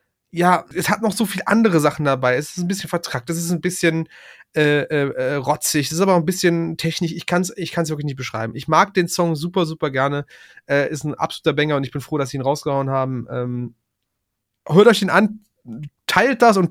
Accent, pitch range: German, 140-170 Hz